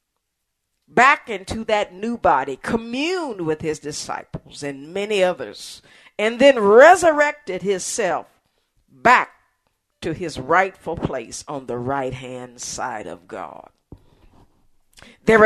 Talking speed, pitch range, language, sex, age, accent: 110 wpm, 155-230 Hz, English, female, 50-69, American